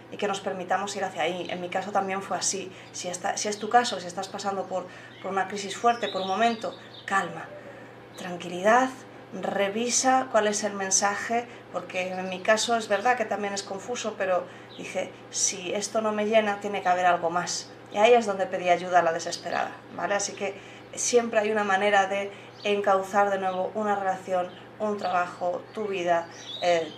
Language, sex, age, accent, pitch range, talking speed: Spanish, female, 30-49, Spanish, 185-220 Hz, 190 wpm